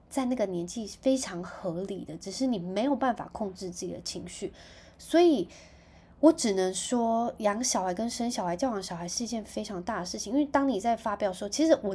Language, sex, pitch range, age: Chinese, female, 180-235 Hz, 20-39